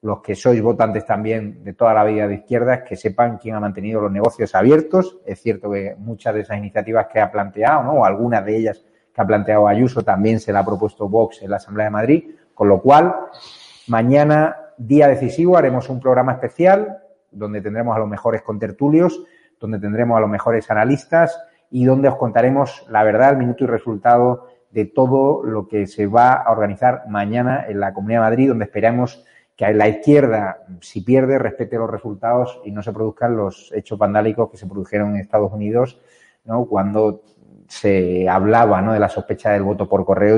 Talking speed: 195 wpm